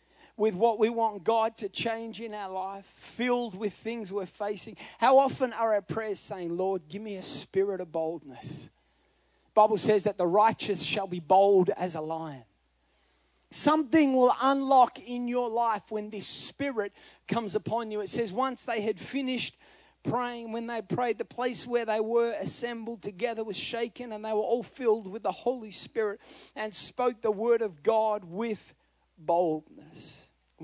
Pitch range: 185-220 Hz